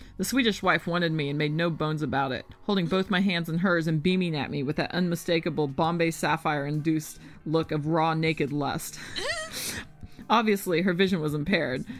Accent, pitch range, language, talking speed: American, 155-200 Hz, English, 180 wpm